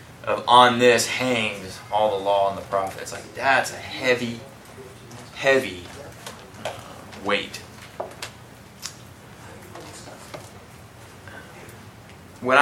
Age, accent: 20-39, American